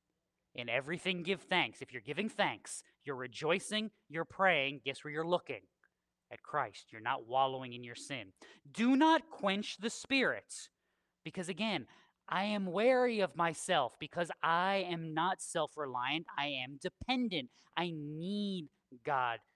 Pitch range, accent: 150-230 Hz, American